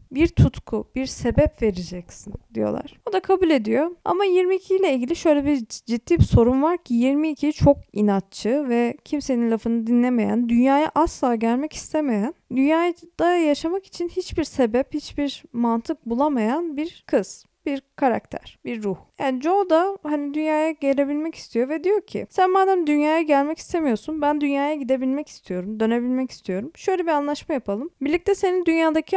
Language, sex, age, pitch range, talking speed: Turkish, female, 10-29, 240-330 Hz, 155 wpm